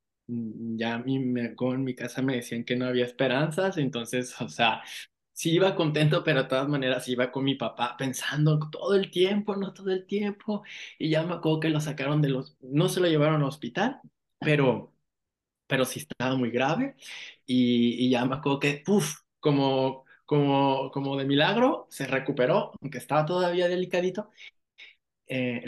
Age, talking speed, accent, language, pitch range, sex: 20-39, 175 wpm, Mexican, Spanish, 120-150 Hz, male